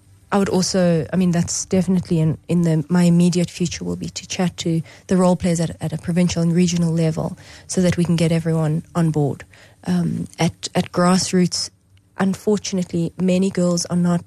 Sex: female